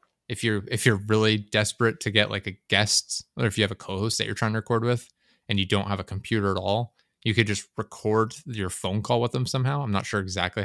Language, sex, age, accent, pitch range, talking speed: English, male, 20-39, American, 95-110 Hz, 255 wpm